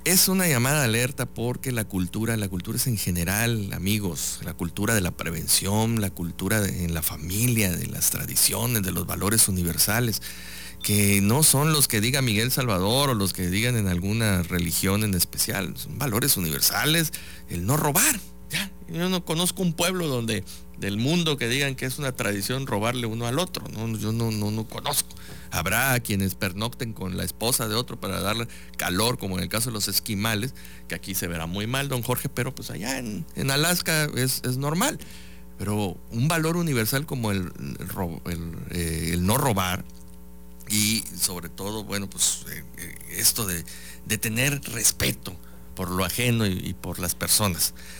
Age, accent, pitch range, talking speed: 50-69, Mexican, 90-125 Hz, 175 wpm